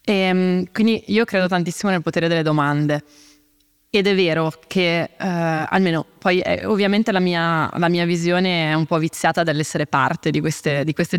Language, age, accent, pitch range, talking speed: Italian, 20-39, native, 160-190 Hz, 160 wpm